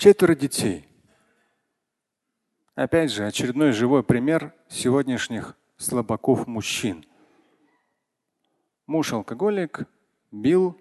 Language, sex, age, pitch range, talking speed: Russian, male, 40-59, 130-175 Hz, 70 wpm